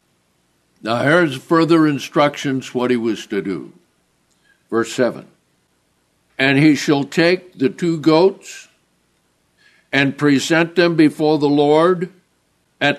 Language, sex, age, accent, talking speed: English, male, 60-79, American, 115 wpm